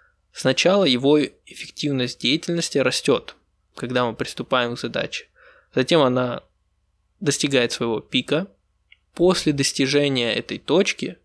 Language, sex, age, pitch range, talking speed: Russian, male, 20-39, 125-160 Hz, 100 wpm